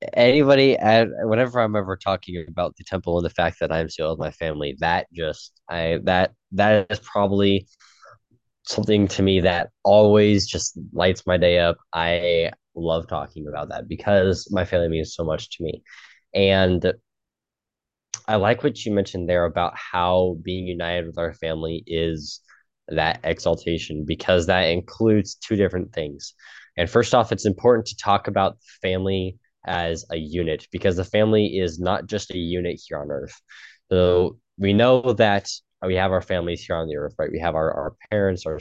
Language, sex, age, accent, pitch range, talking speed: English, male, 10-29, American, 85-100 Hz, 175 wpm